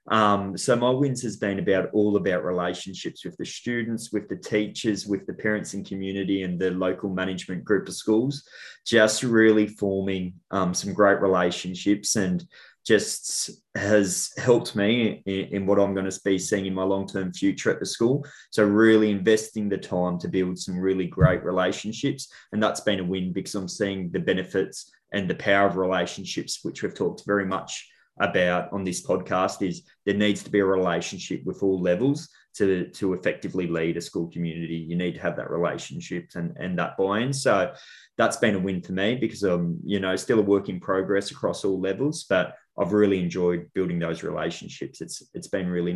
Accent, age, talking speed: Australian, 20-39, 190 wpm